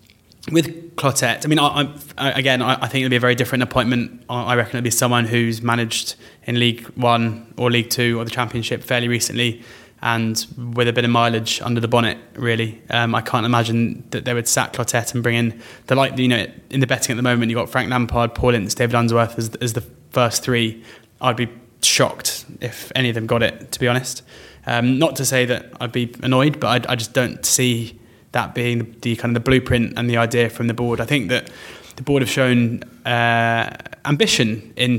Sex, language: male, English